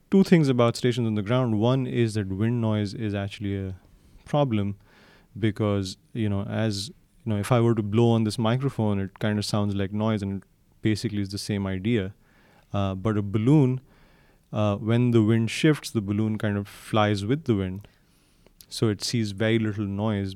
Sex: male